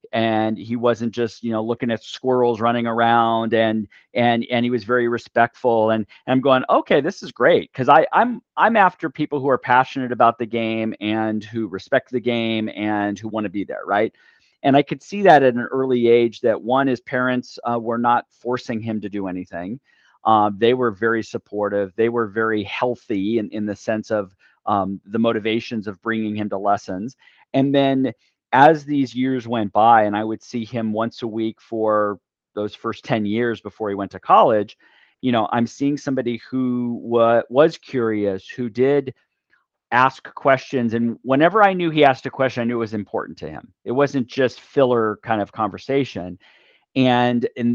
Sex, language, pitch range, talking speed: male, English, 110-130 Hz, 190 wpm